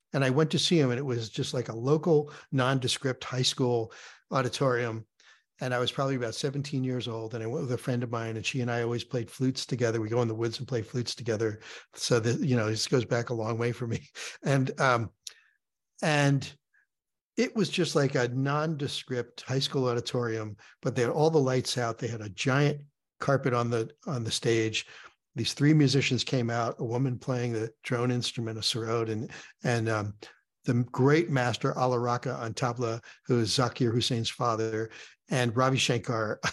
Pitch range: 115-135 Hz